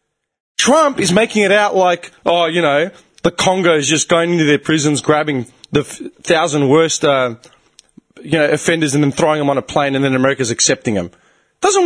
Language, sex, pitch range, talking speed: English, male, 150-220 Hz, 200 wpm